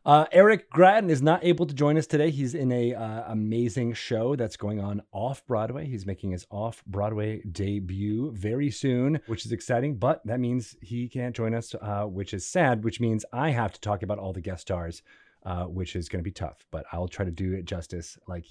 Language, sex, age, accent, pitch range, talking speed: English, male, 30-49, American, 105-155 Hz, 225 wpm